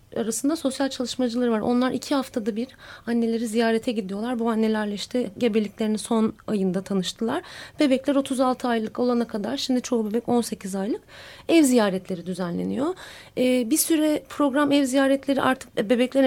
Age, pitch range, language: 30-49, 215-250 Hz, Turkish